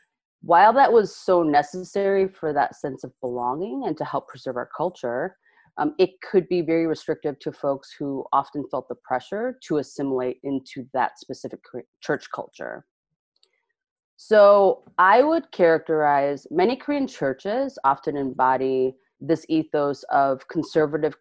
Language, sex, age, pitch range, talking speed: English, female, 30-49, 135-185 Hz, 140 wpm